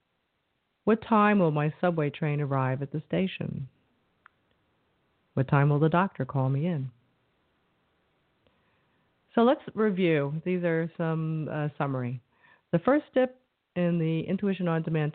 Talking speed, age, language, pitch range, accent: 135 wpm, 40-59, English, 140-180 Hz, American